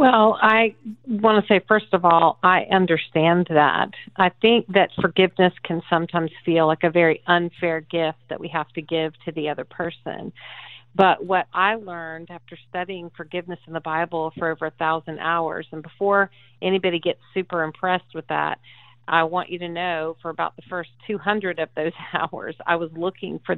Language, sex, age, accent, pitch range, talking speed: English, female, 40-59, American, 160-185 Hz, 185 wpm